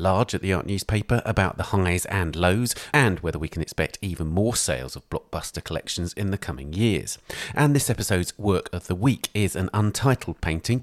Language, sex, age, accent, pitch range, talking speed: English, male, 40-59, British, 85-110 Hz, 200 wpm